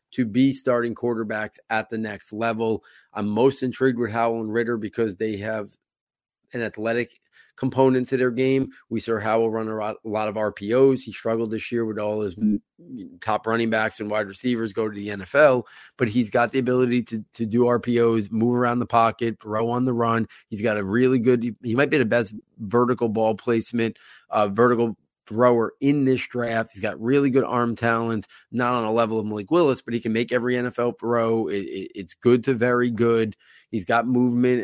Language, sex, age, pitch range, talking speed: English, male, 30-49, 110-125 Hz, 205 wpm